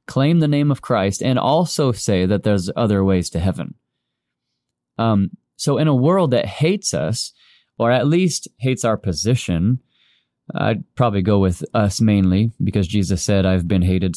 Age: 20-39